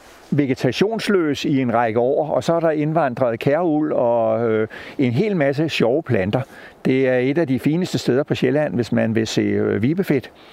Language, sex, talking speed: Danish, male, 175 wpm